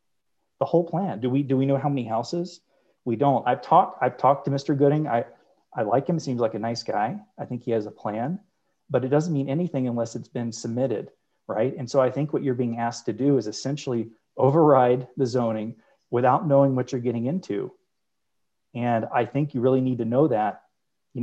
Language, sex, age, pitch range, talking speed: English, male, 30-49, 115-135 Hz, 220 wpm